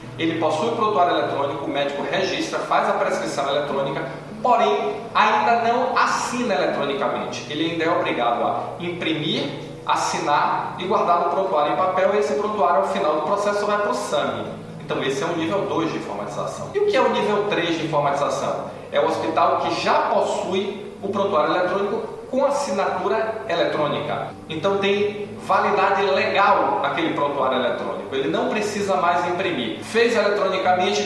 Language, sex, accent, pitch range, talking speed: Portuguese, male, Brazilian, 145-200 Hz, 160 wpm